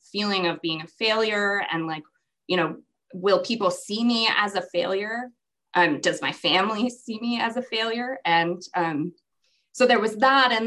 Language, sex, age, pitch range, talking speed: English, female, 20-39, 180-240 Hz, 180 wpm